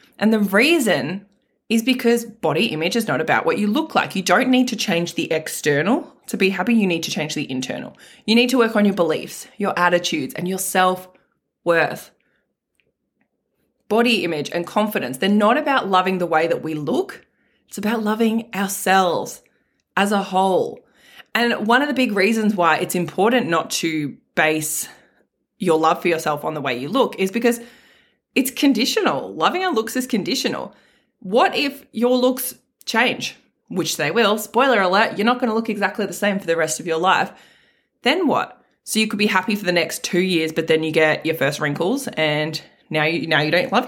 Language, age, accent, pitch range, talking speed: English, 20-39, Australian, 170-235 Hz, 195 wpm